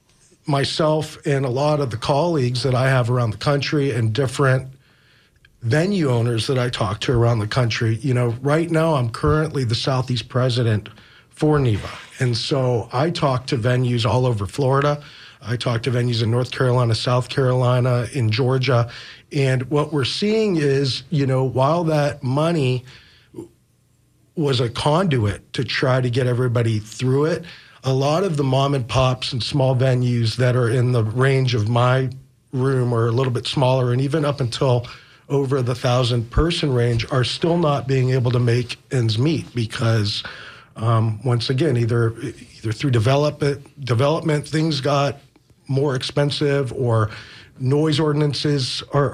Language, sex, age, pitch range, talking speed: English, male, 40-59, 120-145 Hz, 165 wpm